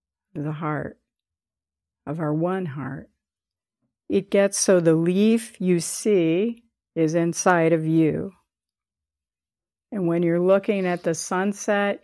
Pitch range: 145-180 Hz